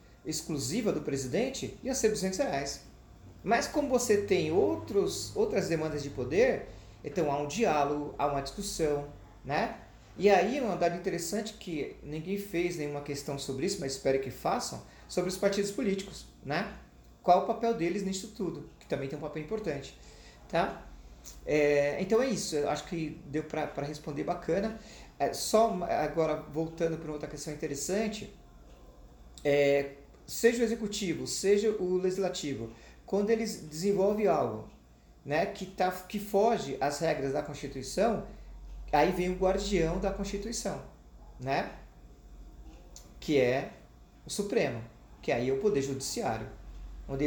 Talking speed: 145 wpm